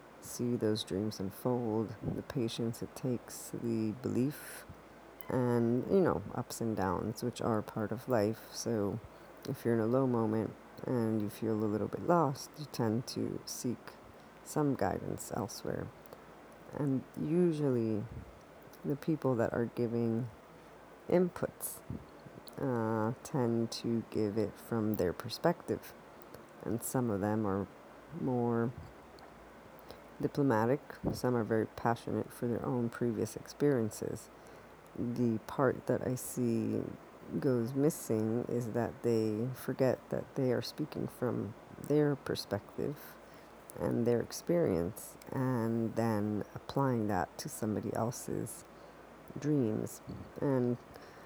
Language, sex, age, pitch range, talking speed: English, female, 50-69, 110-130 Hz, 120 wpm